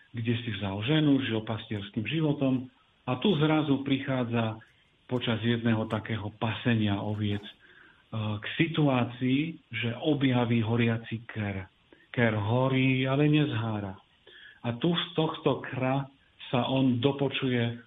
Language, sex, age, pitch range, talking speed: Slovak, male, 40-59, 110-135 Hz, 115 wpm